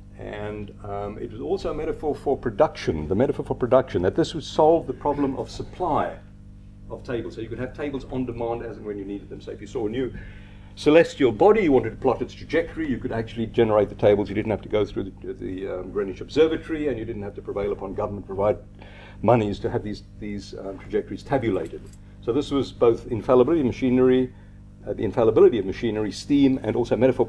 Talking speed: 220 wpm